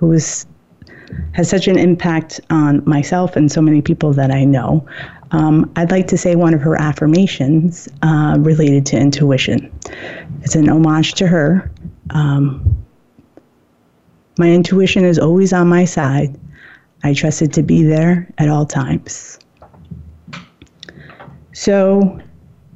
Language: English